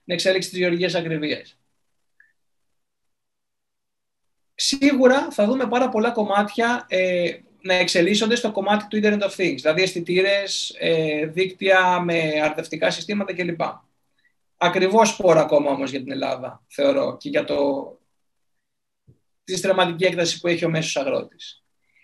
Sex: male